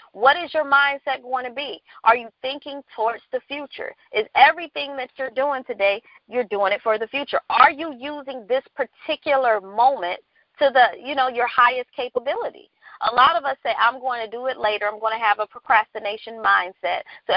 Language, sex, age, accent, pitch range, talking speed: English, female, 40-59, American, 225-280 Hz, 195 wpm